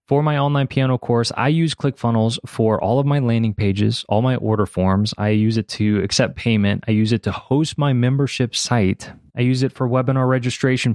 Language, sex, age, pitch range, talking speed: English, male, 20-39, 105-130 Hz, 210 wpm